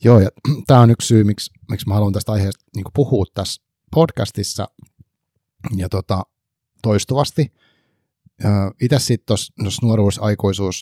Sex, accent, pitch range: male, native, 95-115 Hz